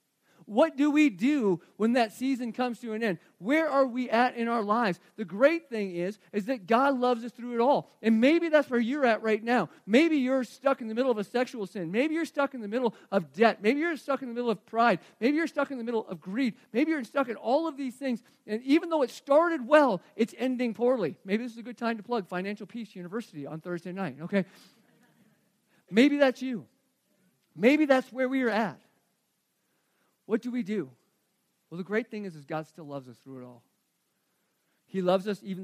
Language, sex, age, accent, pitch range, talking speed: English, male, 40-59, American, 165-245 Hz, 225 wpm